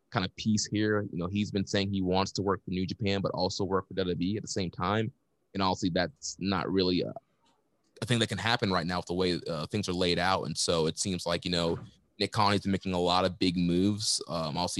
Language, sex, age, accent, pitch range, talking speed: English, male, 20-39, American, 90-100 Hz, 260 wpm